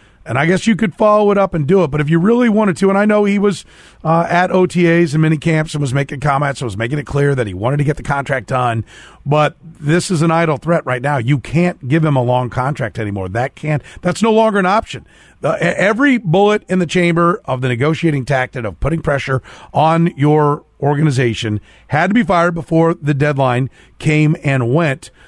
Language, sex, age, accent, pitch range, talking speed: English, male, 40-59, American, 135-180 Hz, 220 wpm